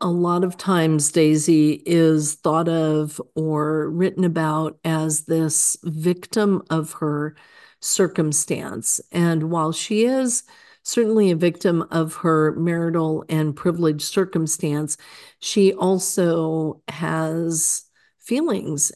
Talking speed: 110 wpm